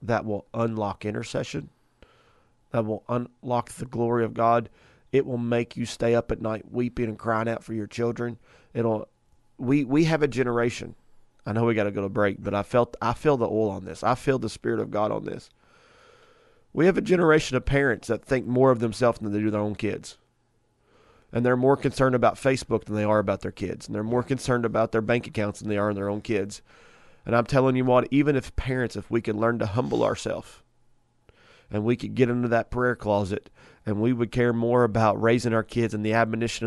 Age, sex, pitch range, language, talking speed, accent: 30-49, male, 110-125 Hz, English, 220 wpm, American